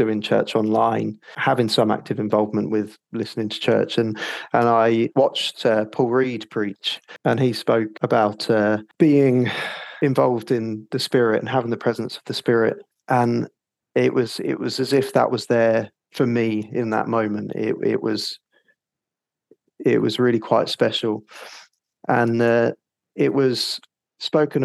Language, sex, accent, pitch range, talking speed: English, male, British, 110-125 Hz, 155 wpm